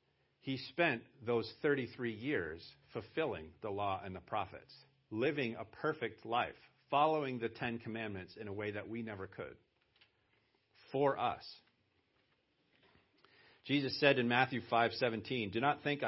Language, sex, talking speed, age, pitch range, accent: English, male, 140 wpm, 50-69, 105-135 Hz, American